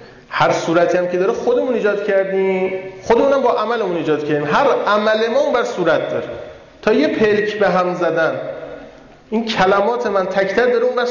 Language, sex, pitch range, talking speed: Persian, male, 160-205 Hz, 165 wpm